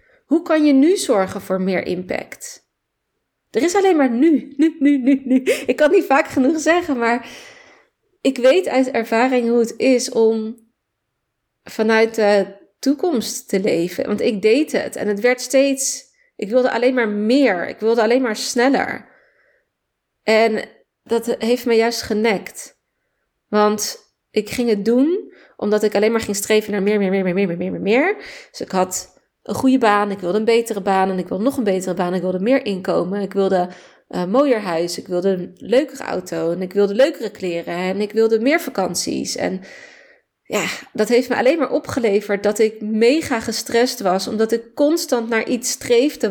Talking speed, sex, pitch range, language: 190 wpm, female, 210-270 Hz, Dutch